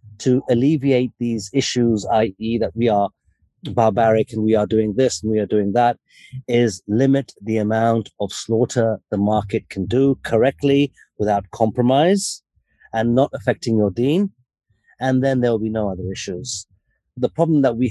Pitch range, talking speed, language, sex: 110-135 Hz, 165 wpm, English, male